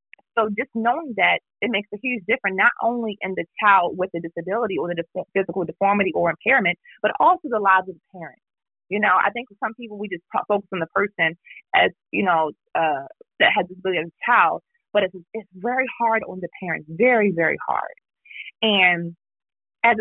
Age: 30-49